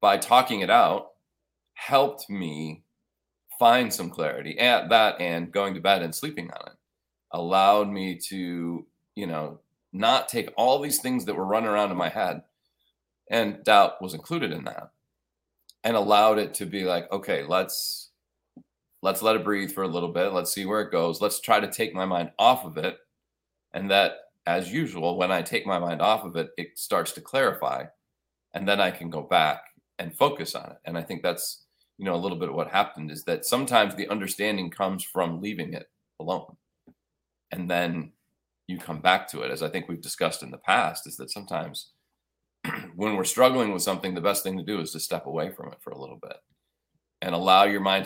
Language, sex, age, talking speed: English, male, 30-49, 200 wpm